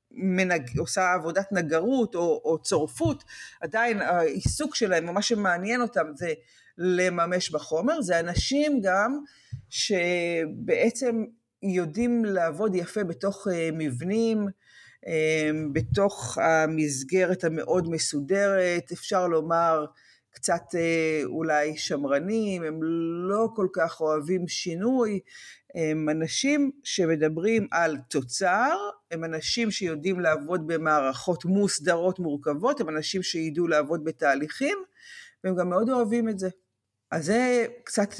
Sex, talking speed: female, 105 wpm